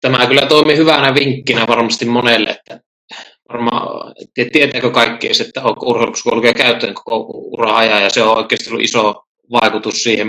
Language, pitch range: Finnish, 115-150 Hz